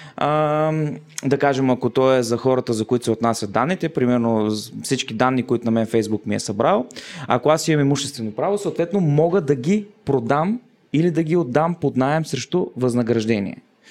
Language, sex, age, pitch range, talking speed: Bulgarian, male, 20-39, 120-160 Hz, 175 wpm